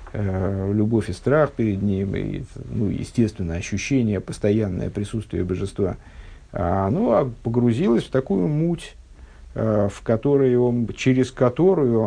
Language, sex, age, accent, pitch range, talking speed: Russian, male, 50-69, native, 105-125 Hz, 110 wpm